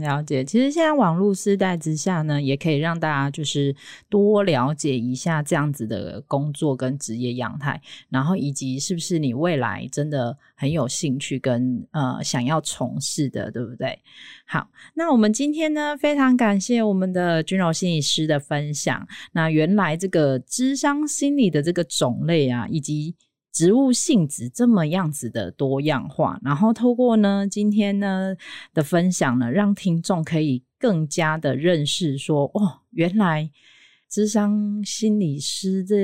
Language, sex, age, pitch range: Chinese, female, 20-39, 140-195 Hz